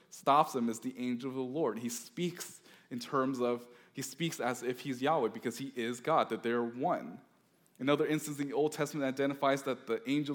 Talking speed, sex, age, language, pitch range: 215 wpm, male, 20-39, English, 120-140 Hz